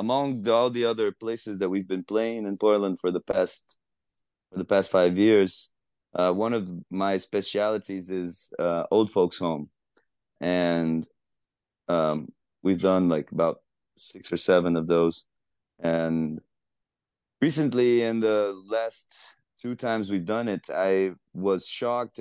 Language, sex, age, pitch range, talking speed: English, male, 30-49, 85-105 Hz, 145 wpm